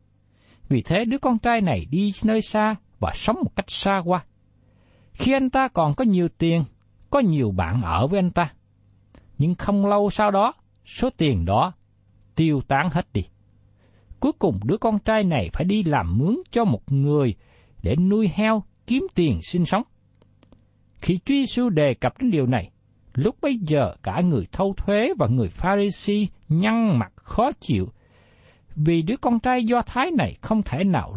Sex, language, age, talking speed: male, Vietnamese, 60-79, 180 wpm